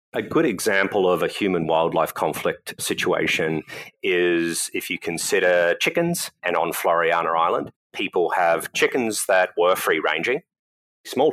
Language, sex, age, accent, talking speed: English, male, 30-49, Australian, 125 wpm